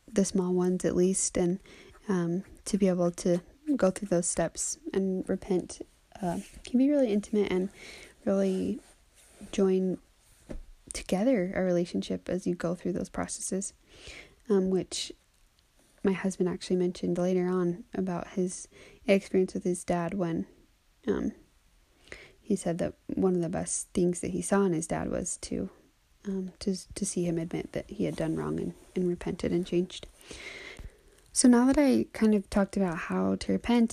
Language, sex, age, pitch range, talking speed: English, female, 20-39, 175-210 Hz, 165 wpm